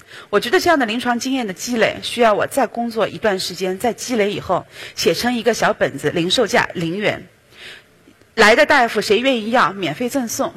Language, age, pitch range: Chinese, 30-49, 205-295 Hz